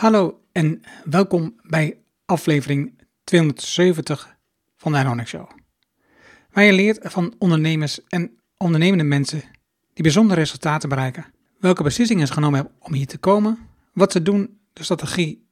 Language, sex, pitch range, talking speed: Dutch, male, 150-195 Hz, 140 wpm